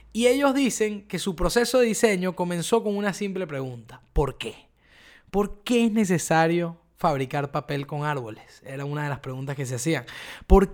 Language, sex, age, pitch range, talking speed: Spanish, male, 20-39, 165-225 Hz, 180 wpm